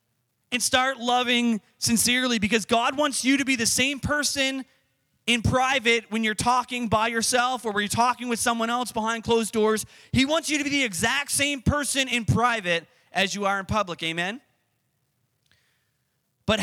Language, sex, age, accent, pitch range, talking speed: English, male, 30-49, American, 165-245 Hz, 175 wpm